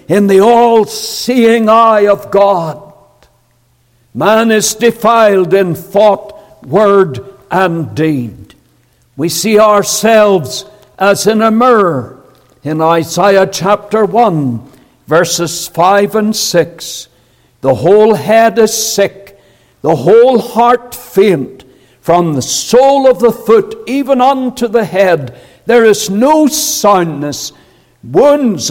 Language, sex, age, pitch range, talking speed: English, male, 60-79, 145-220 Hz, 110 wpm